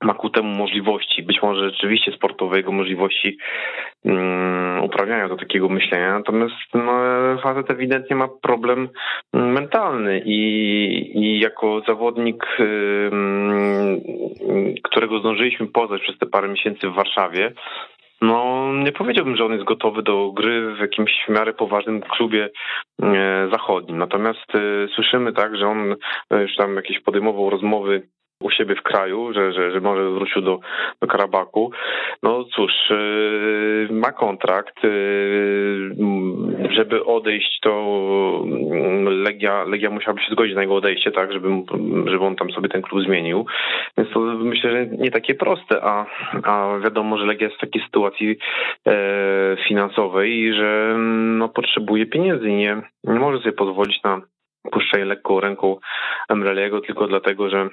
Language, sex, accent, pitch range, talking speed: Polish, male, native, 100-110 Hz, 135 wpm